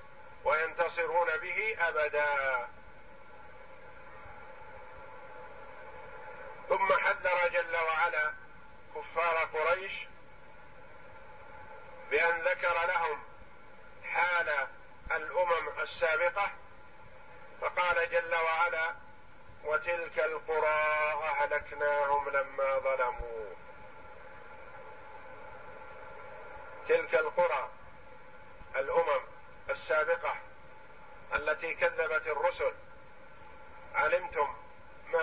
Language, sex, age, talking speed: Arabic, male, 50-69, 55 wpm